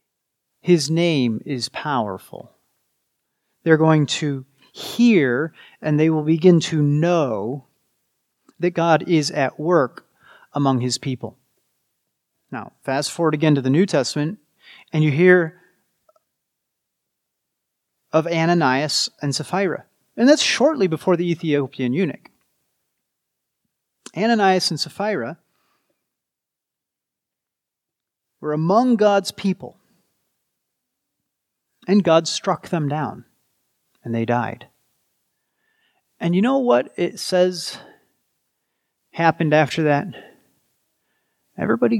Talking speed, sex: 100 wpm, male